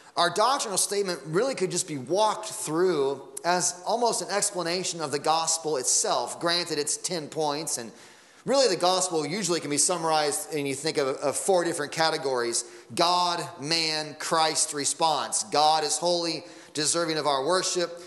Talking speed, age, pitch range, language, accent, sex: 160 wpm, 30-49, 155-175 Hz, English, American, male